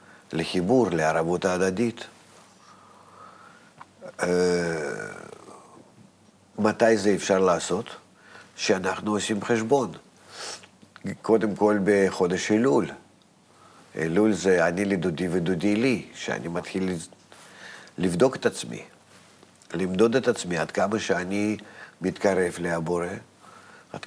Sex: male